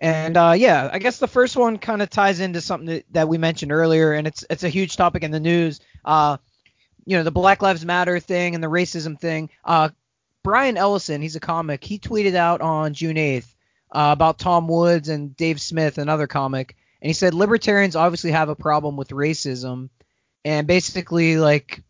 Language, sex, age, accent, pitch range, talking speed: English, male, 20-39, American, 150-180 Hz, 200 wpm